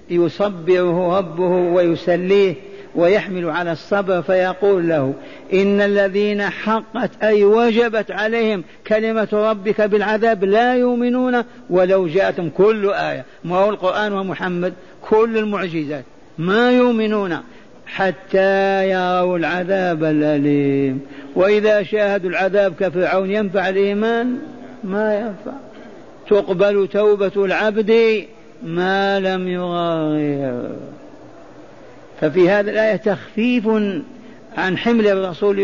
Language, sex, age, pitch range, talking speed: Arabic, male, 50-69, 180-215 Hz, 95 wpm